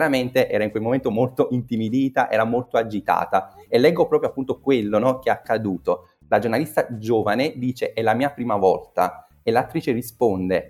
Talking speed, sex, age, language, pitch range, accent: 170 wpm, male, 30-49, Italian, 105-135 Hz, native